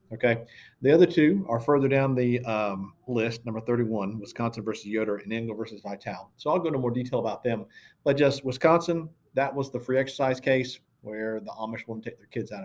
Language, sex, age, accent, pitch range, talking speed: English, male, 40-59, American, 105-135 Hz, 215 wpm